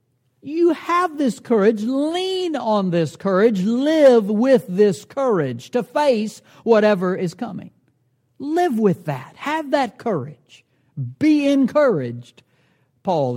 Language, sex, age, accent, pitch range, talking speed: English, male, 60-79, American, 150-235 Hz, 115 wpm